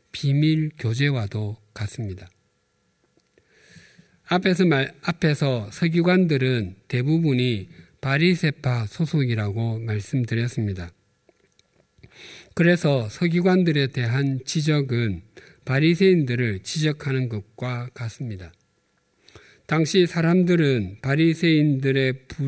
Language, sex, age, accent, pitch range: Korean, male, 50-69, native, 115-160 Hz